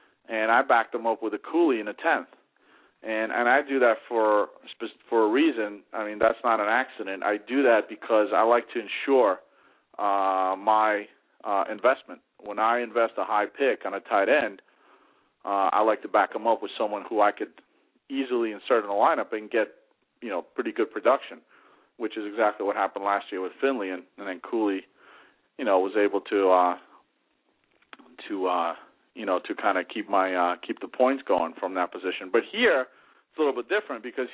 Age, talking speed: 40-59, 205 wpm